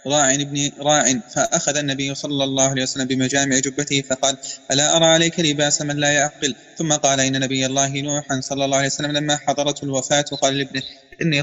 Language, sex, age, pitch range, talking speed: Arabic, male, 30-49, 140-150 Hz, 185 wpm